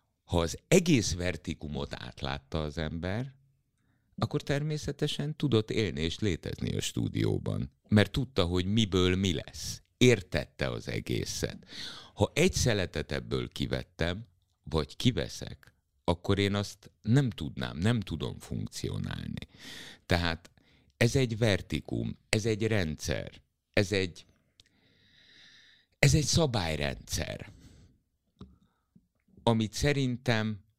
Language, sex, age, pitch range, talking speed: Hungarian, male, 60-79, 80-115 Hz, 105 wpm